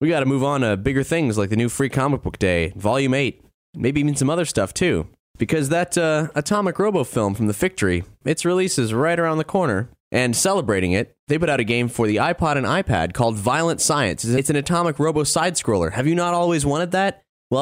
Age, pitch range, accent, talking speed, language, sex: 20-39, 110-150 Hz, American, 225 wpm, English, male